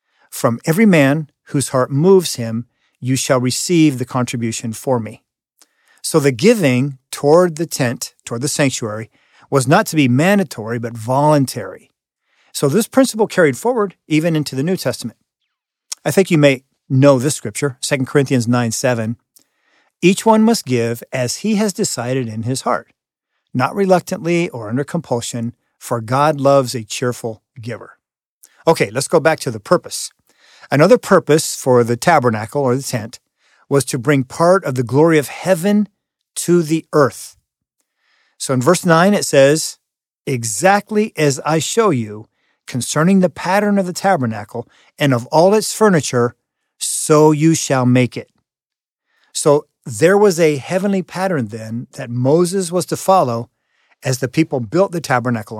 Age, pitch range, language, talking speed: 50-69, 125-175 Hz, English, 155 wpm